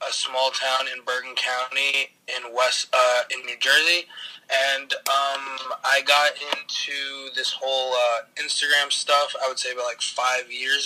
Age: 20-39